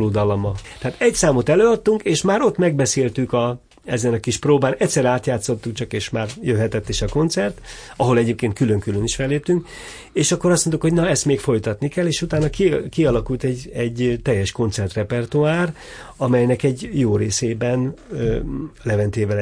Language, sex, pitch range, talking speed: Hungarian, male, 110-140 Hz, 160 wpm